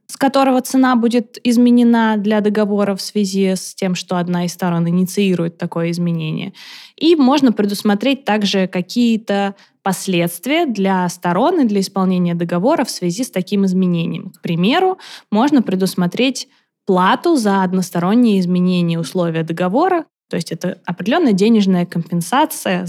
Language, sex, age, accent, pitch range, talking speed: Russian, female, 20-39, native, 175-235 Hz, 135 wpm